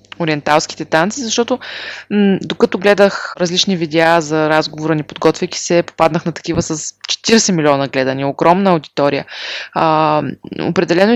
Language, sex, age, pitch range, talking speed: Bulgarian, female, 20-39, 170-215 Hz, 130 wpm